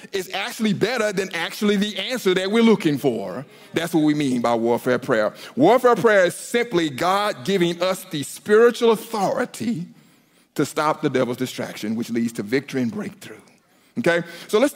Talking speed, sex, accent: 170 wpm, male, American